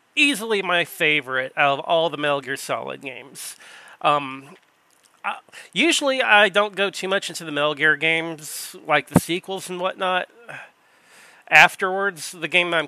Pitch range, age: 140-185 Hz, 30-49